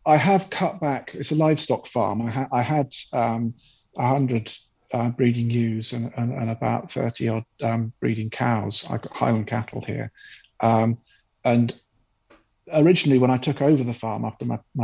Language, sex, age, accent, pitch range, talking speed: English, male, 50-69, British, 115-130 Hz, 160 wpm